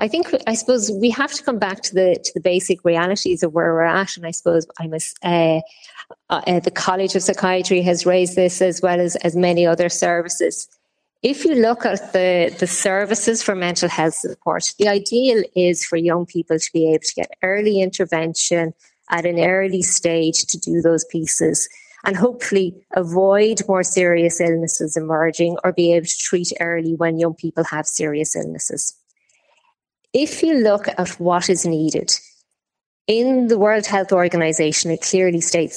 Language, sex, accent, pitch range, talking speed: English, female, Irish, 165-190 Hz, 180 wpm